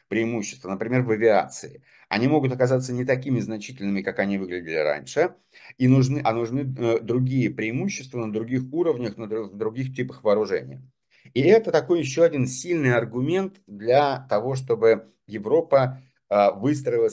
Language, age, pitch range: Russian, 50-69, 110-140 Hz